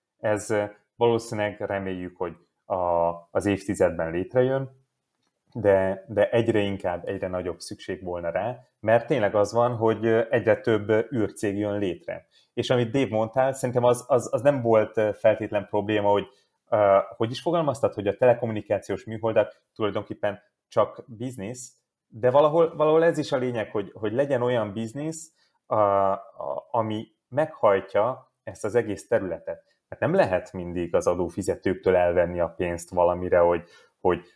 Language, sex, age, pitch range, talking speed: Hungarian, male, 30-49, 95-120 Hz, 145 wpm